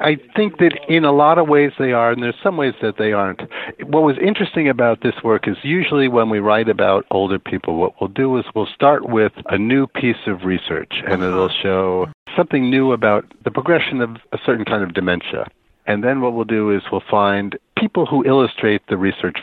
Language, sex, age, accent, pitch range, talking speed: English, male, 60-79, American, 95-140 Hz, 215 wpm